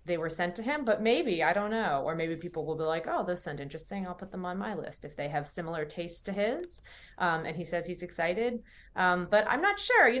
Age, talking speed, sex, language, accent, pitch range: 20-39, 265 wpm, female, English, American, 160-210 Hz